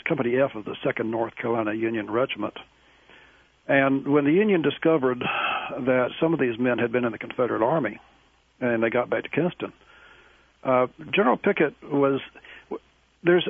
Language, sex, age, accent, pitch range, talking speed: English, male, 60-79, American, 120-145 Hz, 160 wpm